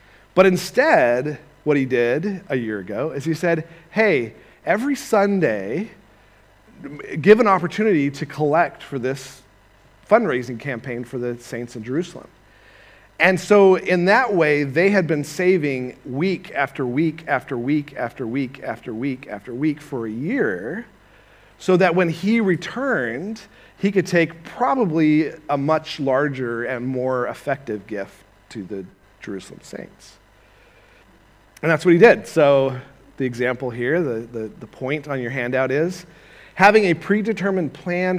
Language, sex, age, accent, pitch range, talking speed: English, male, 40-59, American, 120-175 Hz, 145 wpm